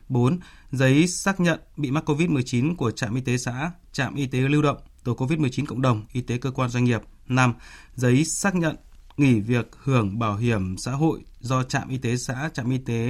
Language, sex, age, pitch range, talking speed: Vietnamese, male, 20-39, 120-150 Hz, 210 wpm